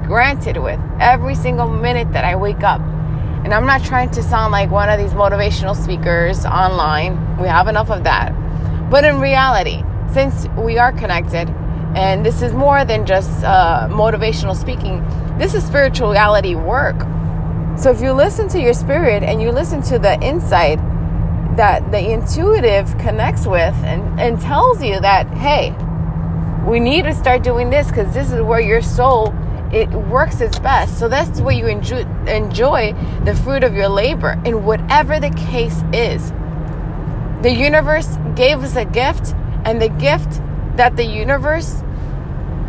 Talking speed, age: 160 wpm, 20-39